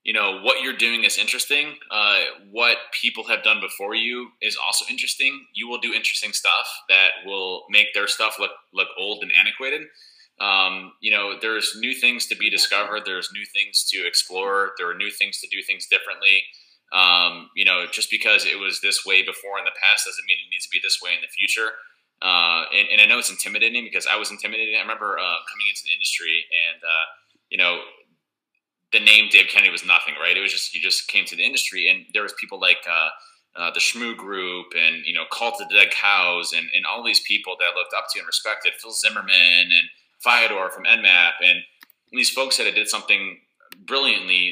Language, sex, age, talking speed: English, male, 20-39, 215 wpm